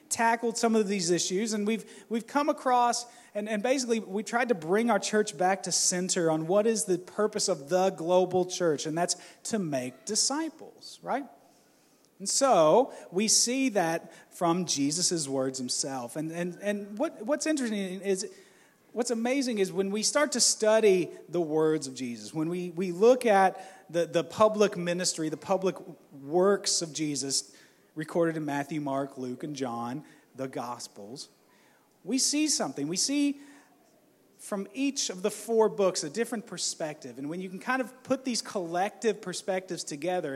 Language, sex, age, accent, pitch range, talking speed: English, male, 30-49, American, 165-230 Hz, 170 wpm